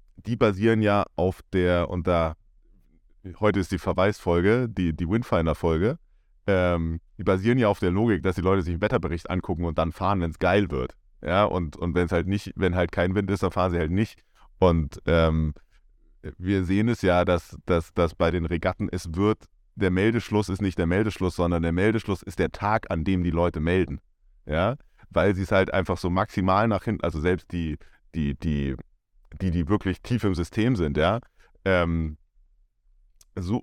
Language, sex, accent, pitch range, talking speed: German, male, German, 90-115 Hz, 195 wpm